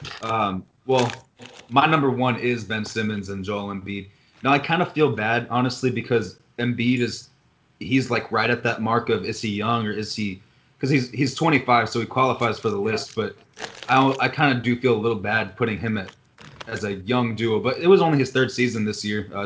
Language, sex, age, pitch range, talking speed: English, male, 20-39, 110-130 Hz, 210 wpm